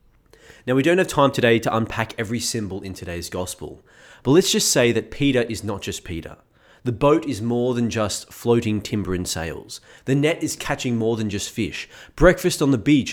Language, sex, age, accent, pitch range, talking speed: English, male, 20-39, Australian, 100-135 Hz, 205 wpm